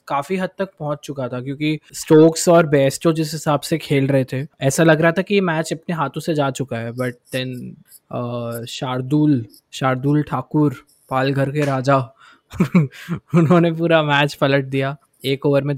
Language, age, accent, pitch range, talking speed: Hindi, 20-39, native, 140-165 Hz, 165 wpm